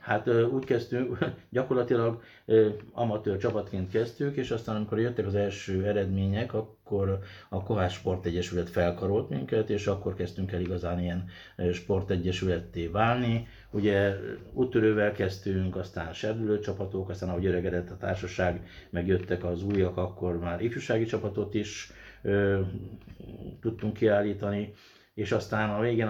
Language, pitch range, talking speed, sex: Hungarian, 90-110 Hz, 130 wpm, male